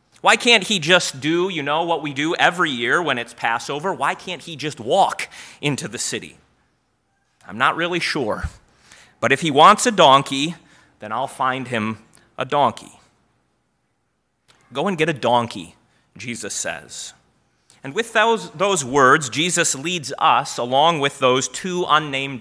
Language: English